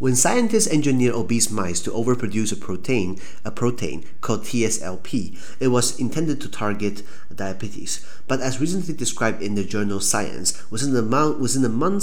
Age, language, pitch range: 30-49, Chinese, 100-125 Hz